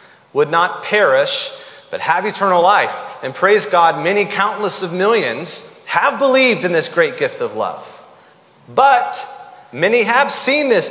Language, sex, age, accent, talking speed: English, male, 30-49, American, 150 wpm